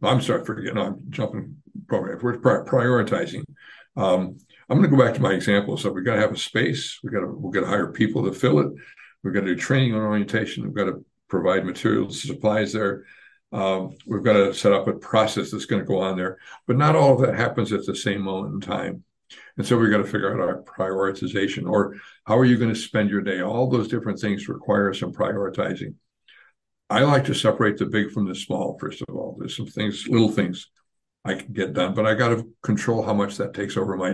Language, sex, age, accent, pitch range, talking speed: English, male, 60-79, American, 95-115 Hz, 235 wpm